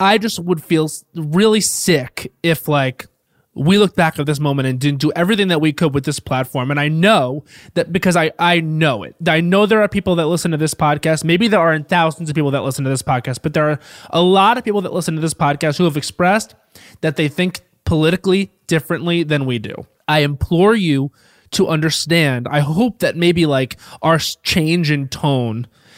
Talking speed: 210 wpm